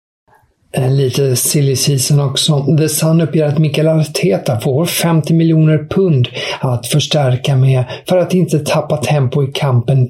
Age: 50-69